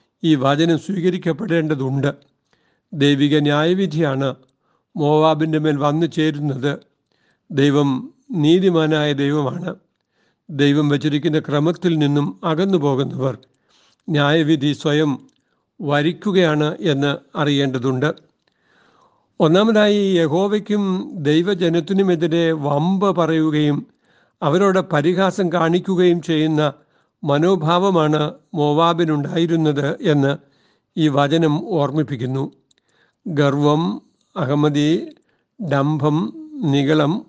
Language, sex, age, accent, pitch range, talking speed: Malayalam, male, 60-79, native, 145-175 Hz, 70 wpm